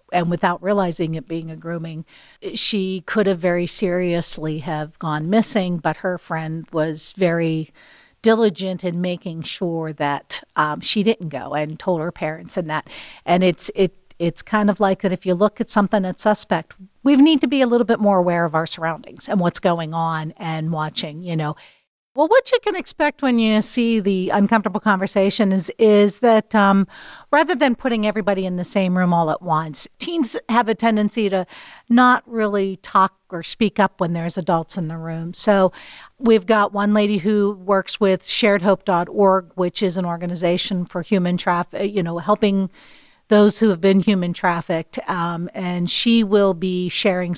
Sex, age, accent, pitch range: female, 50-69, American, 175-210 Hz